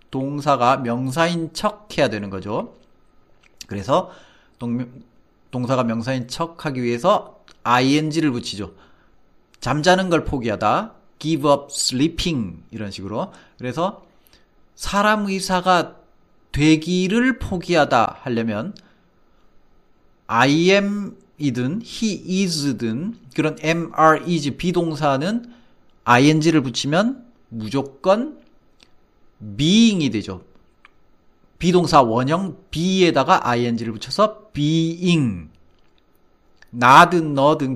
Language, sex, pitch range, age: Korean, male, 125-185 Hz, 40-59